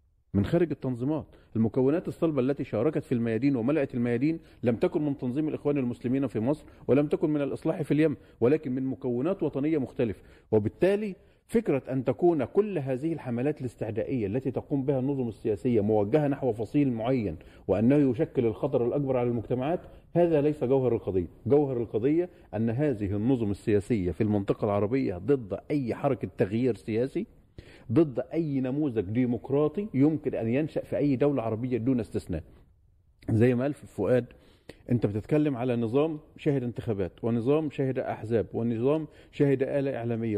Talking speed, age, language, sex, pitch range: 150 wpm, 40-59, Arabic, male, 115-150 Hz